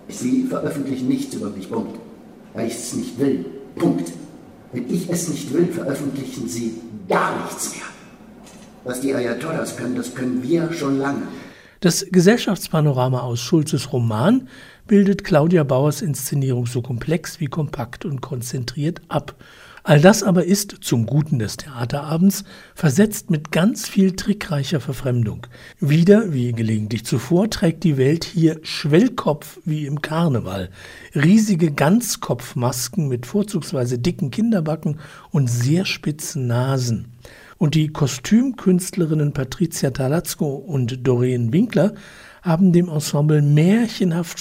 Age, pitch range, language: 60-79, 130-180 Hz, German